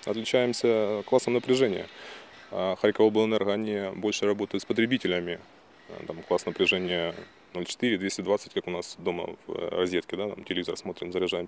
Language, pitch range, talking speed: Ukrainian, 100-125 Hz, 130 wpm